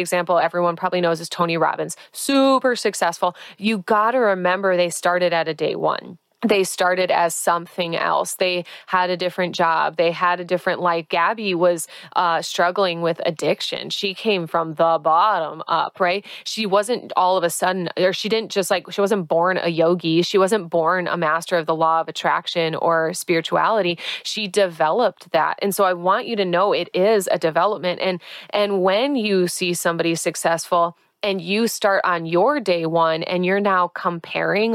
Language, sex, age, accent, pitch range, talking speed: English, female, 20-39, American, 170-200 Hz, 185 wpm